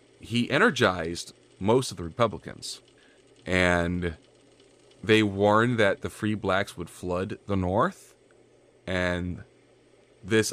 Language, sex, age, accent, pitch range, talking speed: English, male, 30-49, American, 90-110 Hz, 110 wpm